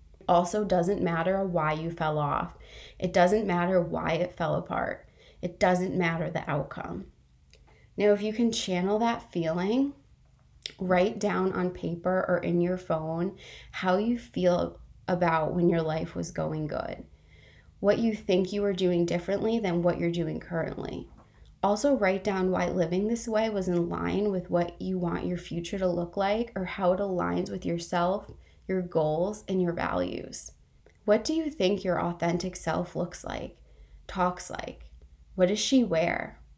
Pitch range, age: 170-210 Hz, 20-39